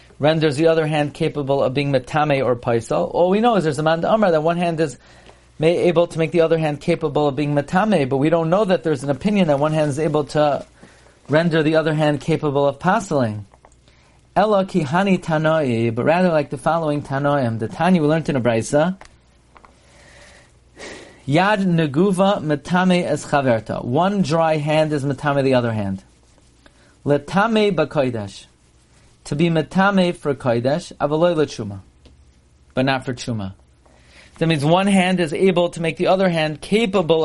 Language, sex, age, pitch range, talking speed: English, male, 40-59, 130-170 Hz, 170 wpm